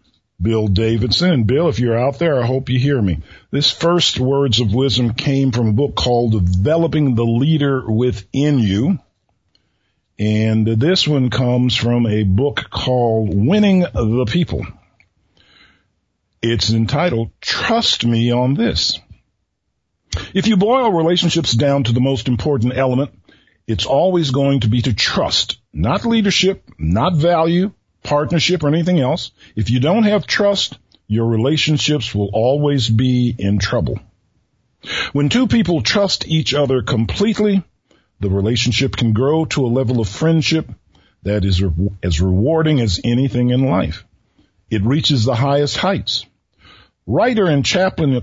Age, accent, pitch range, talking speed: 50-69, American, 110-155 Hz, 140 wpm